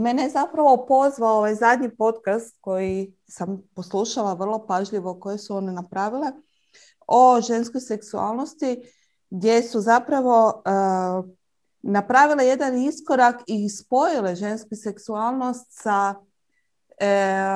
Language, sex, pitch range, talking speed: Croatian, female, 195-235 Hz, 110 wpm